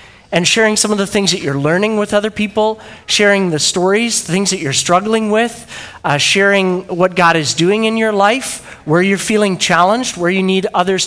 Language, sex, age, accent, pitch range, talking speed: English, male, 30-49, American, 160-210 Hz, 205 wpm